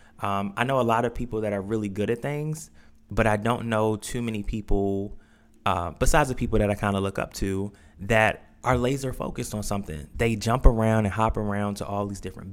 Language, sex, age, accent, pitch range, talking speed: English, male, 20-39, American, 95-115 Hz, 225 wpm